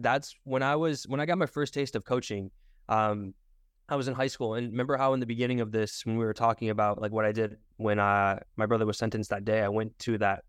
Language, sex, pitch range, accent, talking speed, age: English, male, 110-130 Hz, American, 270 wpm, 10-29